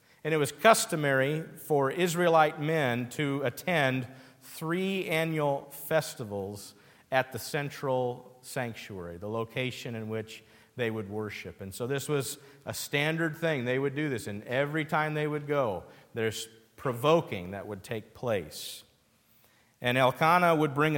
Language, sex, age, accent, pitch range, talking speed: English, male, 50-69, American, 110-140 Hz, 145 wpm